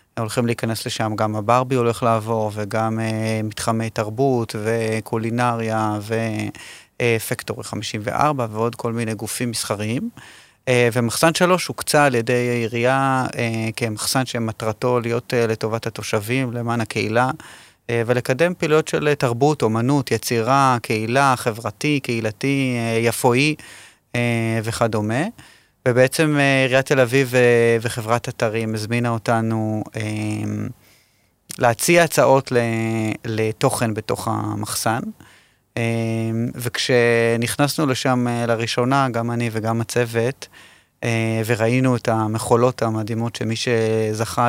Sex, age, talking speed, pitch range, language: male, 30-49, 95 wpm, 110-125 Hz, Hebrew